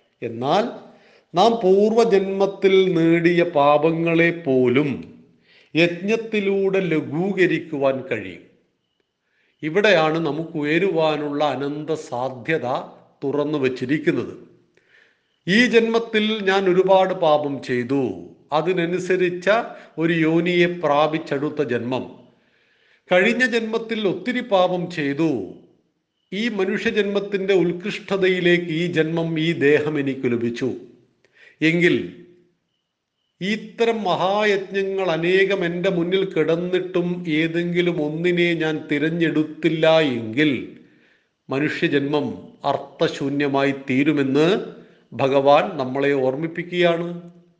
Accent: native